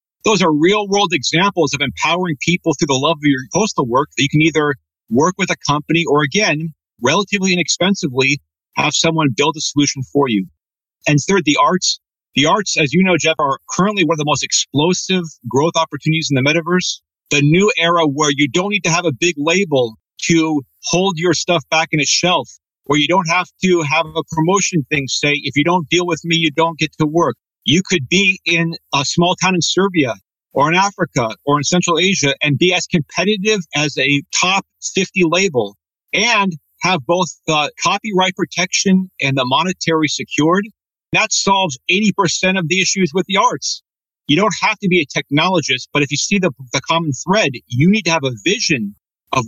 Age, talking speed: 40-59, 195 wpm